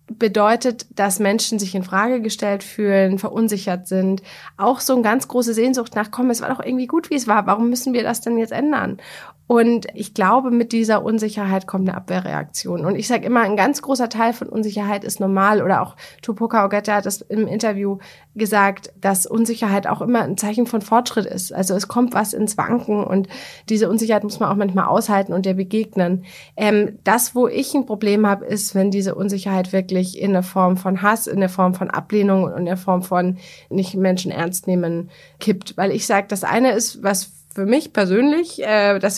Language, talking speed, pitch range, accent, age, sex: German, 205 wpm, 190-225 Hz, German, 30-49, female